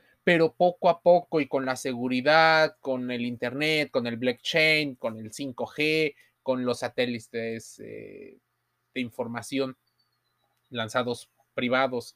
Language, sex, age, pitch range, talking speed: Spanish, male, 30-49, 125-175 Hz, 125 wpm